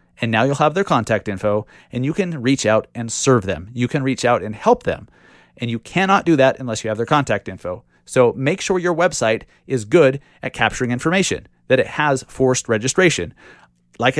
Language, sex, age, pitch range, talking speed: English, male, 30-49, 105-150 Hz, 205 wpm